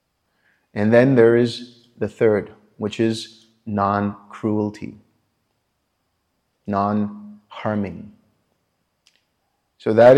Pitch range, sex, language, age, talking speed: 100-120 Hz, male, English, 30-49, 70 wpm